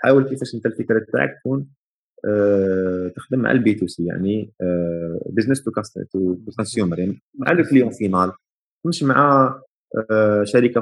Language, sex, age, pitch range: Arabic, male, 30-49, 110-145 Hz